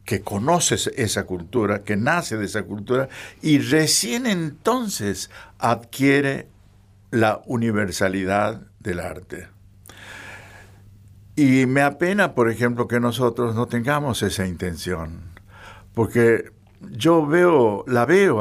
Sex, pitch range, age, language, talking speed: male, 100-120 Hz, 60-79, Spanish, 105 wpm